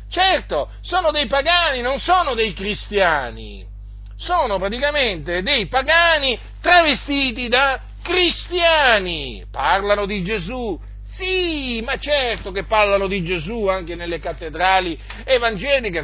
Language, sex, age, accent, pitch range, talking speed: Italian, male, 50-69, native, 155-230 Hz, 110 wpm